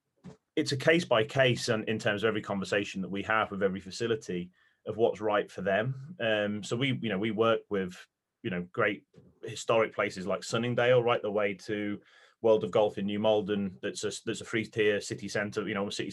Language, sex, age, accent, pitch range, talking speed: English, male, 30-49, British, 100-120 Hz, 220 wpm